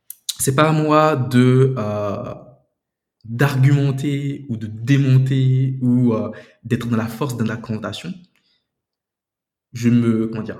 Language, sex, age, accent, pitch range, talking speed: French, male, 20-39, French, 115-135 Hz, 120 wpm